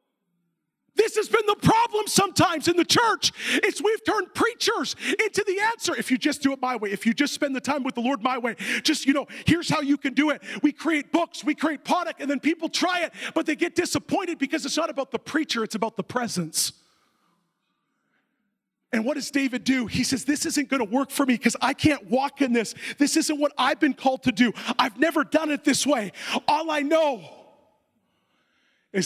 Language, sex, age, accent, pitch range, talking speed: English, male, 40-59, American, 260-310 Hz, 220 wpm